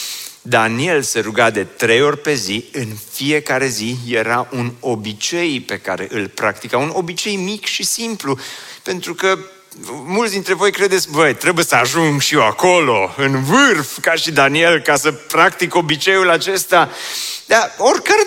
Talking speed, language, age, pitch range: 160 wpm, Romanian, 30-49, 135-180 Hz